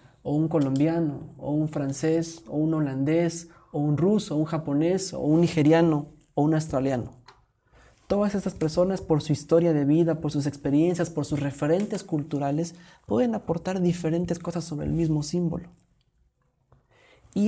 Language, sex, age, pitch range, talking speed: Spanish, male, 30-49, 145-175 Hz, 155 wpm